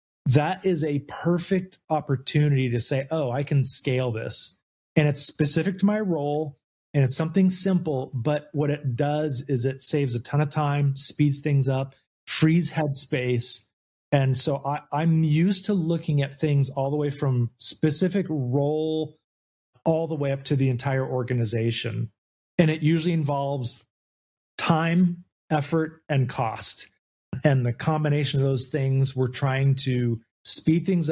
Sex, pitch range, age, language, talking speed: male, 125-150 Hz, 30-49, English, 150 wpm